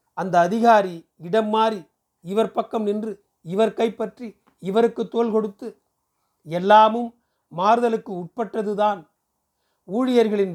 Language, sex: Tamil, male